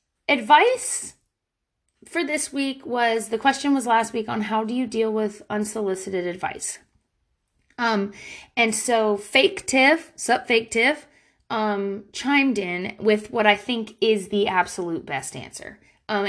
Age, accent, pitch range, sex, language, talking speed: 30-49, American, 180-235 Hz, female, English, 145 wpm